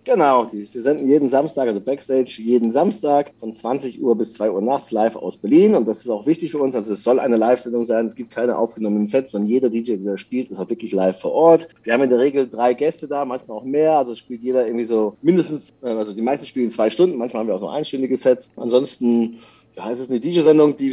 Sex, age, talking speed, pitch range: male, 40-59, 245 wpm, 120-145 Hz